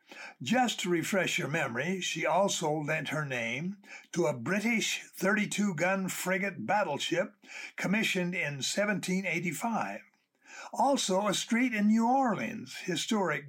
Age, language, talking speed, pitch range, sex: 60-79, English, 120 wpm, 155-210 Hz, male